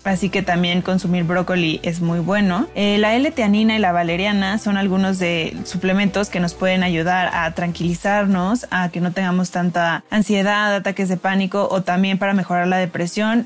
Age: 20-39